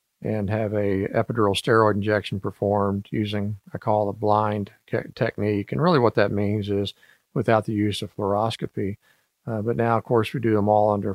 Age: 50-69